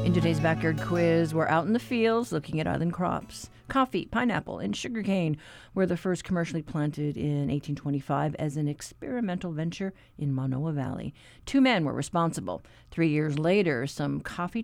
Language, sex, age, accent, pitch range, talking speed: English, female, 50-69, American, 150-190 Hz, 165 wpm